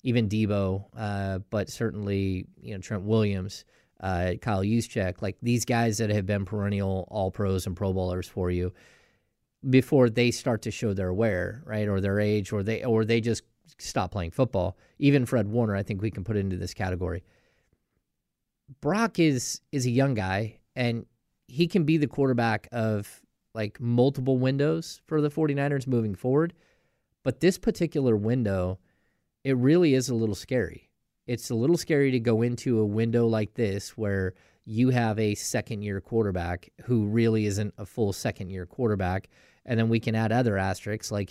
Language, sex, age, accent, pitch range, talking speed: English, male, 30-49, American, 100-125 Hz, 175 wpm